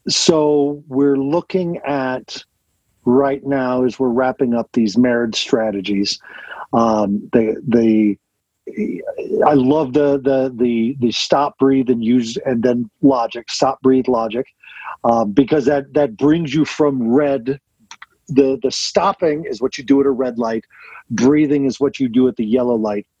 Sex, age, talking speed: male, 40-59, 155 wpm